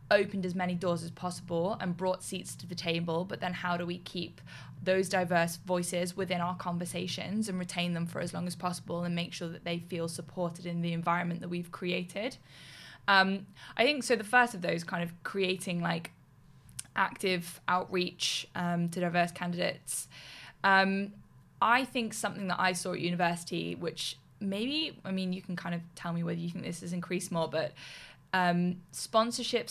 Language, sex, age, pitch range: English, female, 10-29, 170-190 Hz